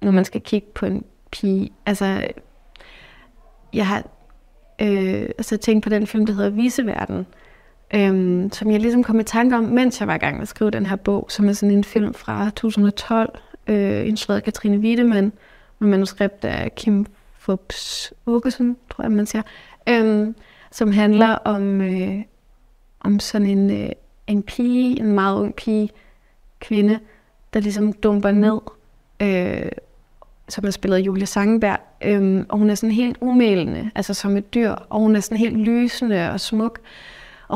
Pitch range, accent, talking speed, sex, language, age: 200-230 Hz, native, 175 wpm, female, Danish, 30-49